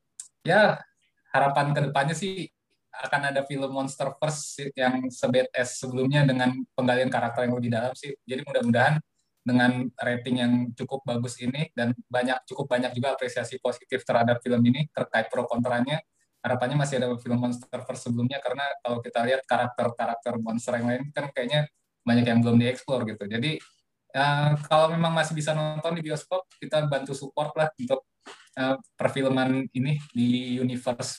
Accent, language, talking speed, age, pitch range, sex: native, Indonesian, 160 wpm, 20-39, 125-150 Hz, male